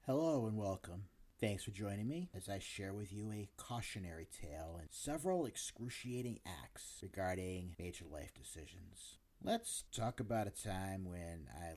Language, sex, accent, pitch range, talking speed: English, male, American, 85-110 Hz, 155 wpm